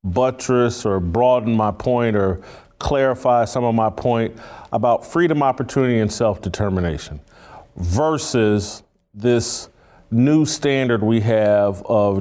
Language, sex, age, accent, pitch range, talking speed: English, male, 40-59, American, 110-145 Hz, 115 wpm